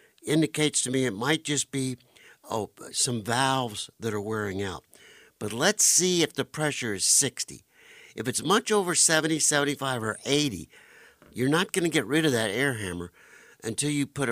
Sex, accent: male, American